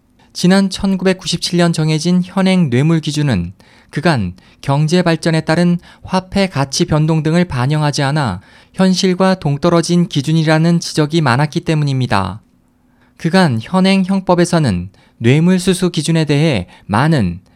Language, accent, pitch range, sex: Korean, native, 140-180 Hz, male